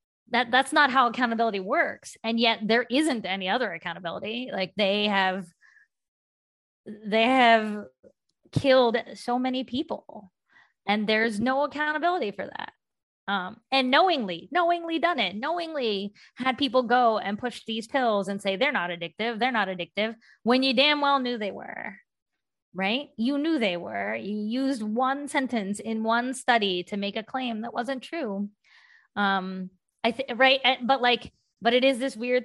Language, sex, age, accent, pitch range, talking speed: English, female, 20-39, American, 195-250 Hz, 160 wpm